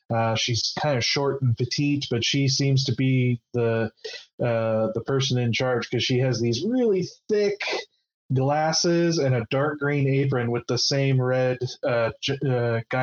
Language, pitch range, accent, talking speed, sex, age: English, 115-135 Hz, American, 165 wpm, male, 20-39